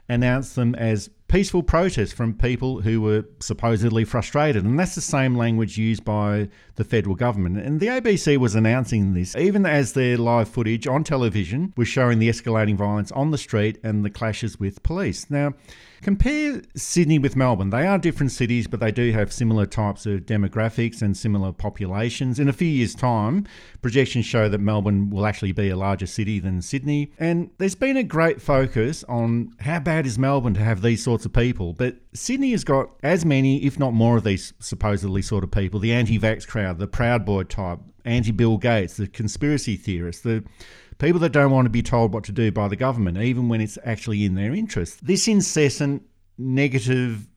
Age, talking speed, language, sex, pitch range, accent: 50-69, 195 wpm, English, male, 105-140 Hz, Australian